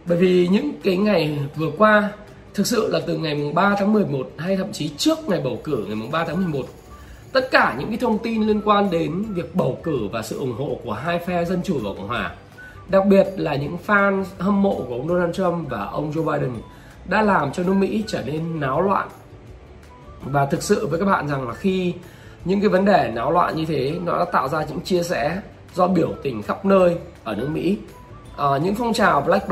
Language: Vietnamese